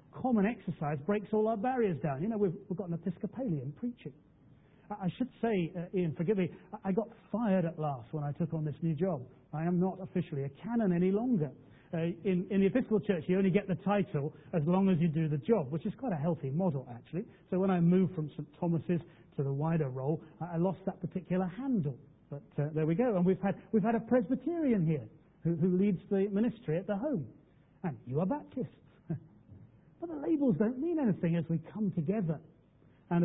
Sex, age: male, 40-59